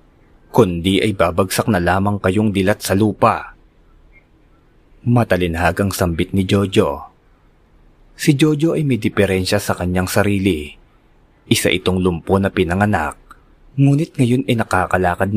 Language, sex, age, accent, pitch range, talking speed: Filipino, male, 20-39, native, 90-110 Hz, 115 wpm